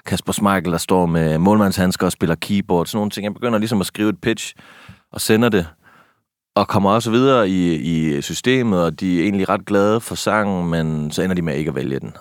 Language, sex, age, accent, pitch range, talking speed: Danish, male, 30-49, native, 80-100 Hz, 230 wpm